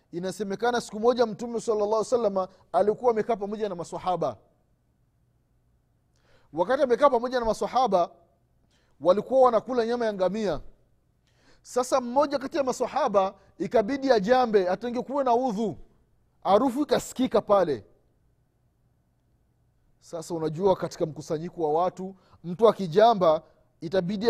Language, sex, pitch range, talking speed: Swahili, male, 145-240 Hz, 110 wpm